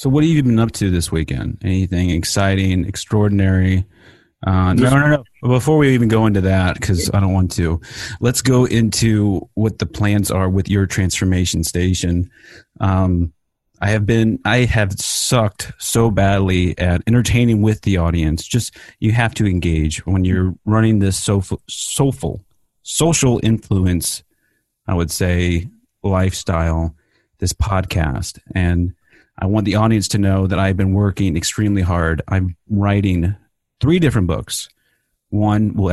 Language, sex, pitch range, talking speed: English, male, 90-110 Hz, 155 wpm